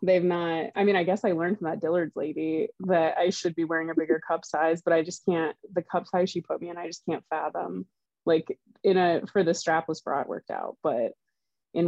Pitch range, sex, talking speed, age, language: 160-190 Hz, female, 240 wpm, 20-39, English